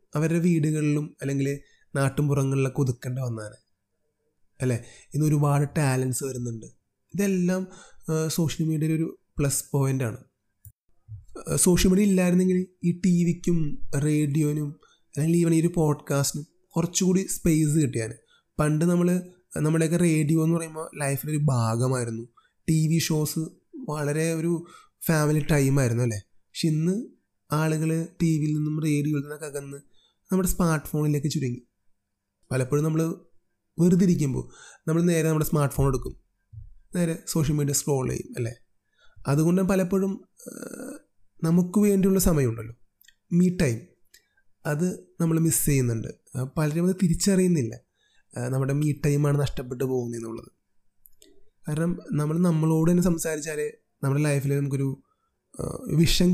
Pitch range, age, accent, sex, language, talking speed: 135-170 Hz, 30-49, native, male, Malayalam, 105 wpm